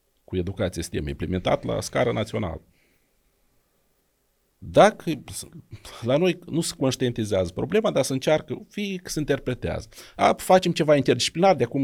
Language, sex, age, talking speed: Romanian, male, 40-59, 135 wpm